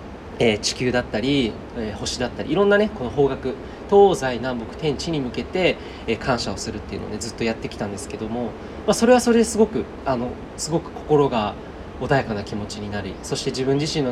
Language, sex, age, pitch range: Japanese, male, 20-39, 110-170 Hz